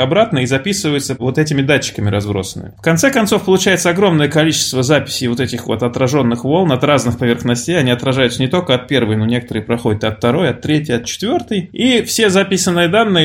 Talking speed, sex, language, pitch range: 185 wpm, male, Russian, 115-160 Hz